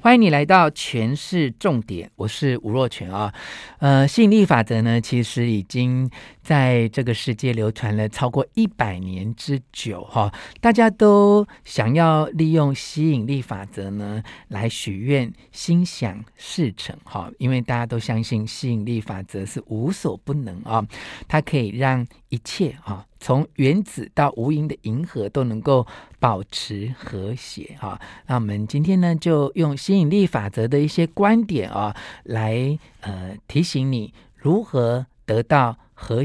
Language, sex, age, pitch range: Chinese, male, 50-69, 110-150 Hz